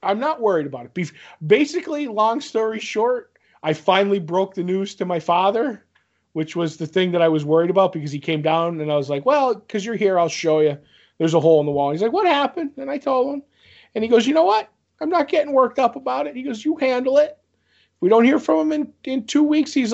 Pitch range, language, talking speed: 165-270 Hz, English, 250 wpm